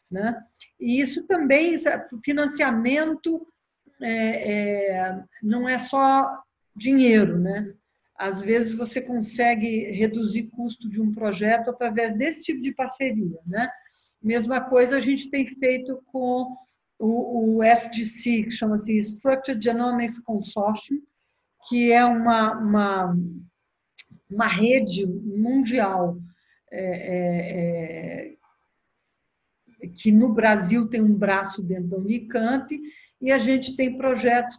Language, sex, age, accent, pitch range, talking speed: Portuguese, female, 50-69, Brazilian, 210-255 Hz, 115 wpm